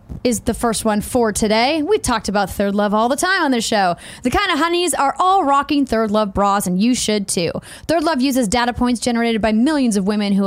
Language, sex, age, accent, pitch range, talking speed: English, female, 10-29, American, 215-285 Hz, 240 wpm